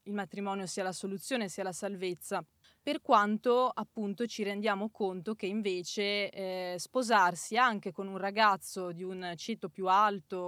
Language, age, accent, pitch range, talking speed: Italian, 20-39, native, 190-220 Hz, 155 wpm